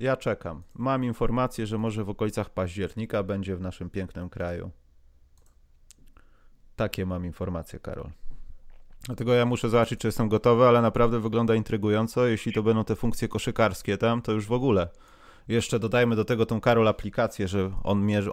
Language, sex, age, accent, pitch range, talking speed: Polish, male, 30-49, native, 95-125 Hz, 165 wpm